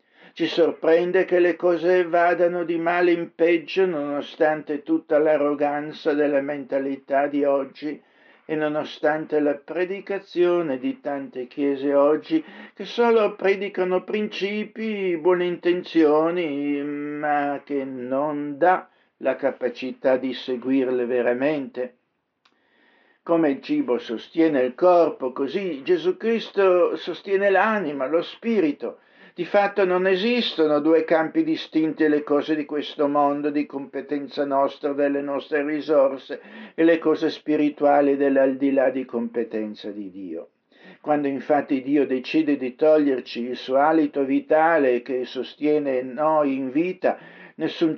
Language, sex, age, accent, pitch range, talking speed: Italian, male, 60-79, native, 135-175 Hz, 120 wpm